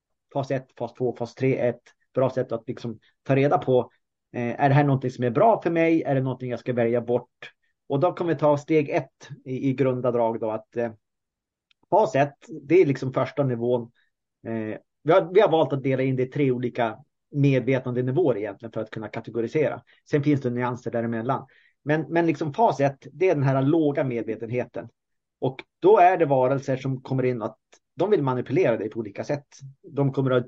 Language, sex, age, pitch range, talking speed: Swedish, male, 30-49, 120-145 Hz, 210 wpm